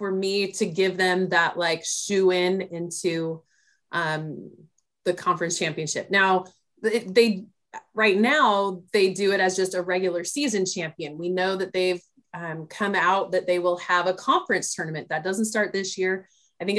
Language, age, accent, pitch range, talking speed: English, 20-39, American, 175-220 Hz, 175 wpm